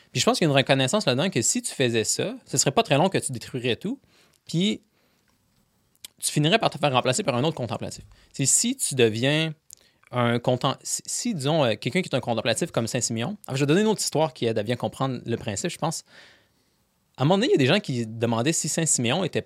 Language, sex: French, male